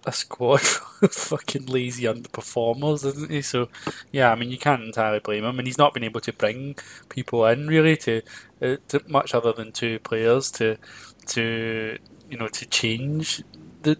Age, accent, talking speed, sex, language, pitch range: 20-39, British, 190 wpm, male, English, 115-135 Hz